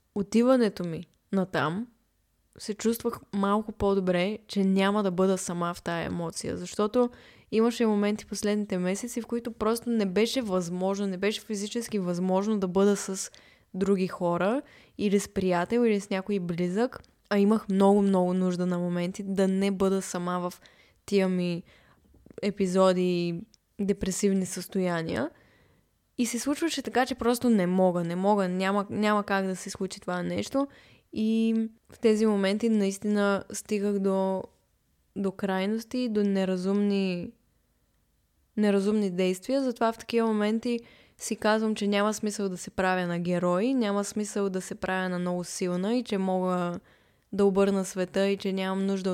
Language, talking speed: Bulgarian, 150 wpm